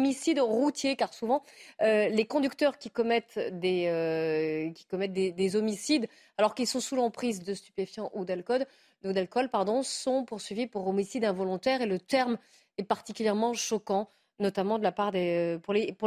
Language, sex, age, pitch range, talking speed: French, female, 30-49, 215-270 Hz, 165 wpm